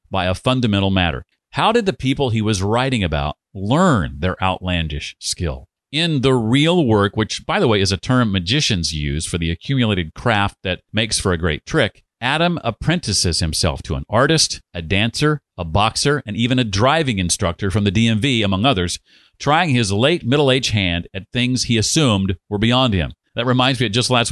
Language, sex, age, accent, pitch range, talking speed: English, male, 40-59, American, 95-130 Hz, 190 wpm